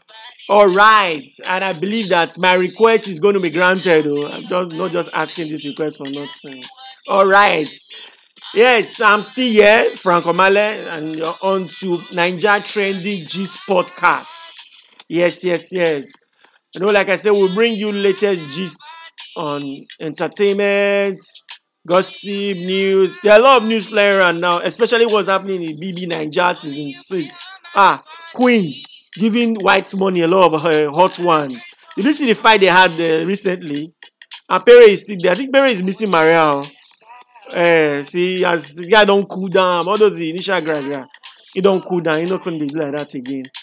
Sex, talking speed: male, 170 wpm